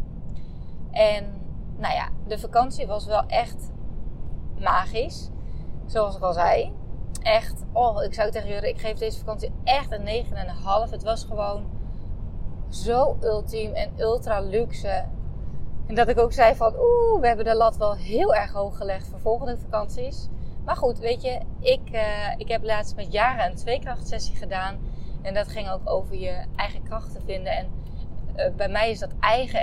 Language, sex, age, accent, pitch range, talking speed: Dutch, female, 20-39, Dutch, 195-245 Hz, 165 wpm